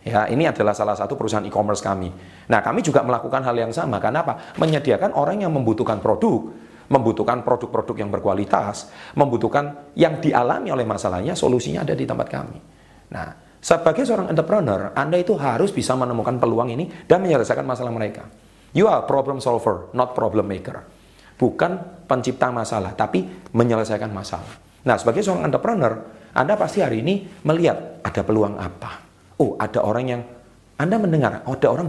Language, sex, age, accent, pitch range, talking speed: English, male, 40-59, Indonesian, 100-140 Hz, 160 wpm